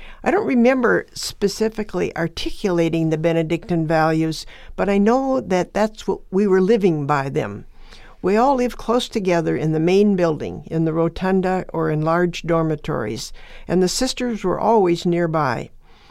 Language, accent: English, American